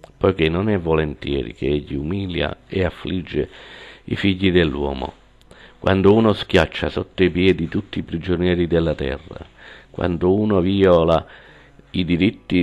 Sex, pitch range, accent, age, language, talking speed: male, 80-95 Hz, native, 50-69, Italian, 135 wpm